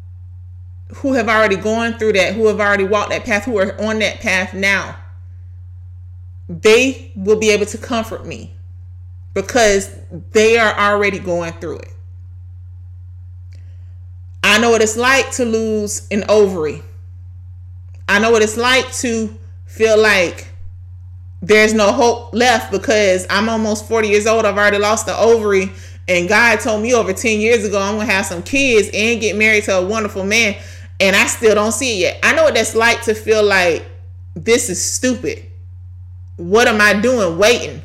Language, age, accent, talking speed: English, 30-49, American, 170 wpm